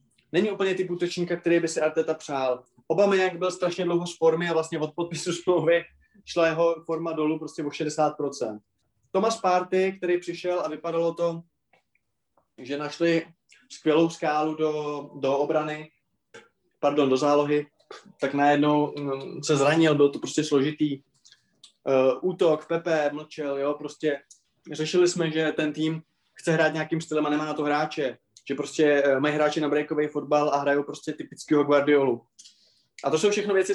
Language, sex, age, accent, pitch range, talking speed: Czech, male, 20-39, native, 145-170 Hz, 155 wpm